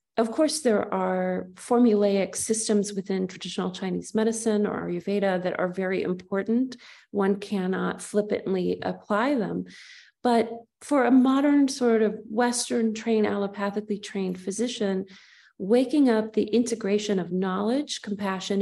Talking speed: 125 wpm